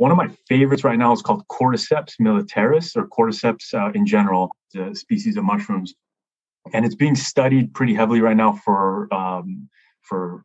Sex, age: male, 20-39